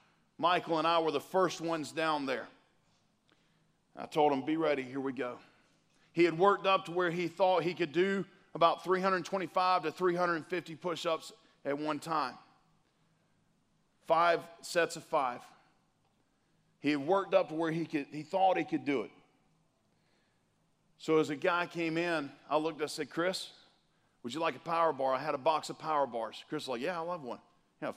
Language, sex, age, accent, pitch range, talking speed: English, male, 40-59, American, 135-170 Hz, 185 wpm